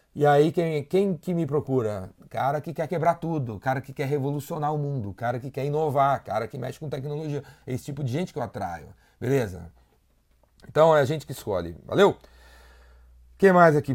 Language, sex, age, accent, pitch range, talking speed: Portuguese, male, 30-49, Brazilian, 135-175 Hz, 200 wpm